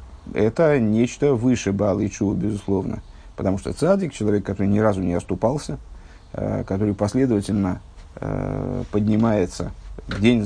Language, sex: Russian, male